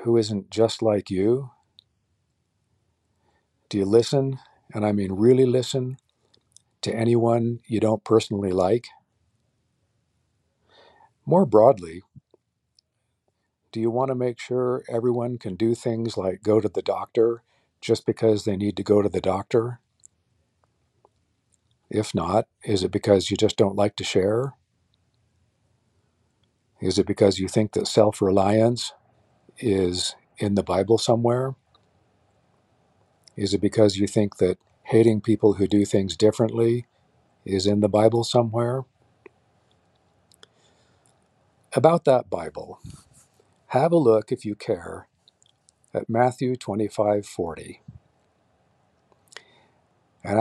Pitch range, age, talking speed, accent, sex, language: 100-120 Hz, 50-69, 115 wpm, American, male, English